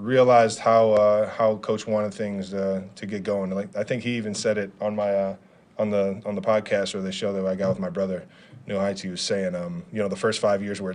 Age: 20-39